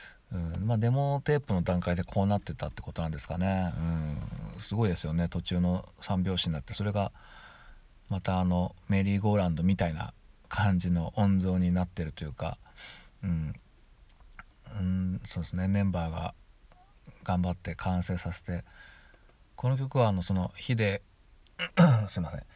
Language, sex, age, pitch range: Japanese, male, 40-59, 85-105 Hz